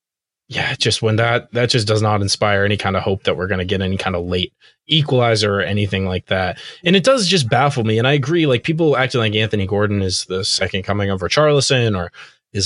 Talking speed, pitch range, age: 235 wpm, 100-130 Hz, 20-39